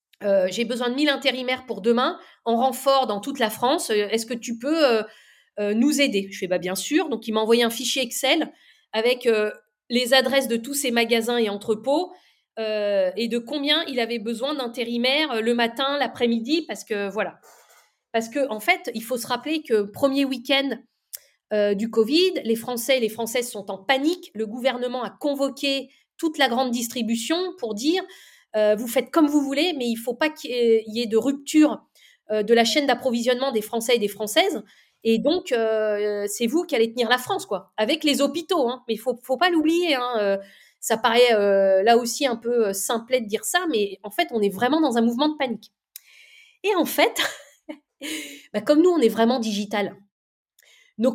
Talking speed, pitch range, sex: 205 wpm, 220-280 Hz, female